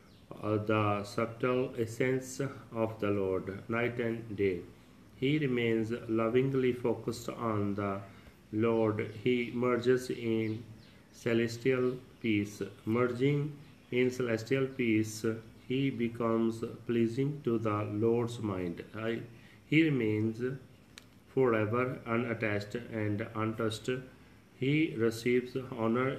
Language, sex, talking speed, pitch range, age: Punjabi, male, 100 wpm, 105-125 Hz, 40-59